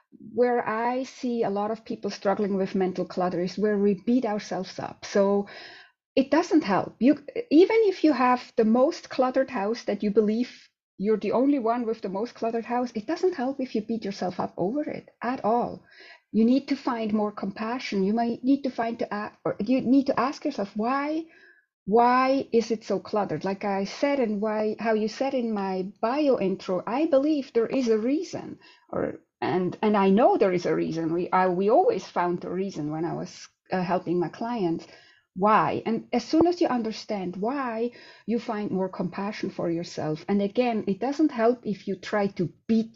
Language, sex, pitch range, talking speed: English, female, 200-265 Hz, 200 wpm